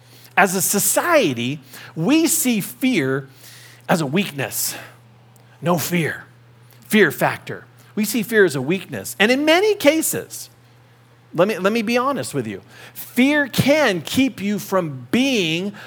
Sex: male